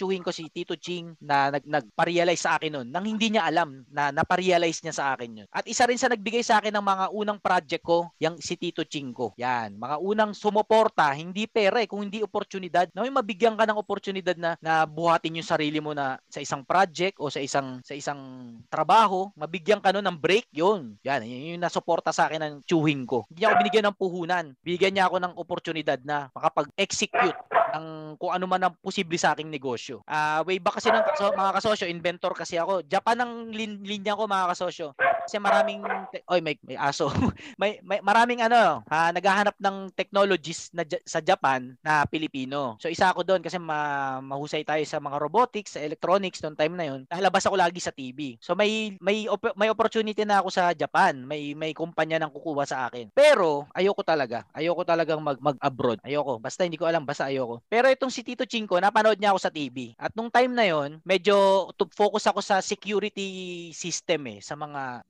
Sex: male